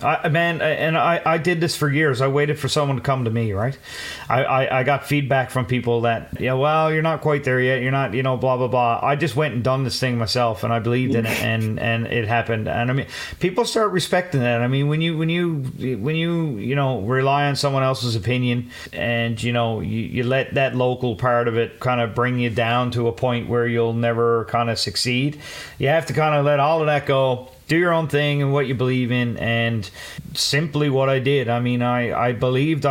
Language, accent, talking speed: English, American, 245 wpm